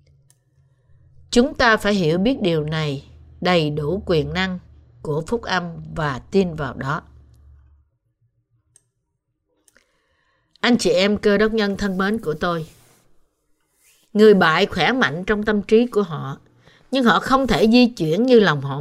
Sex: female